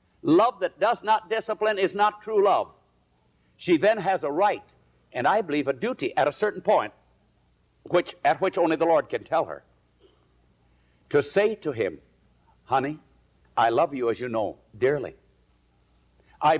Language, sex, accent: English, male, American